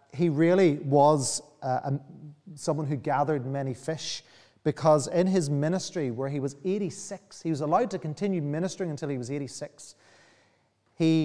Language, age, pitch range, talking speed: English, 30-49, 135-190 Hz, 155 wpm